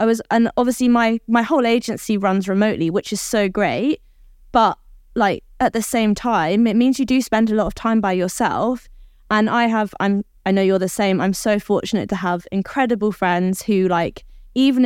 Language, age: English, 20-39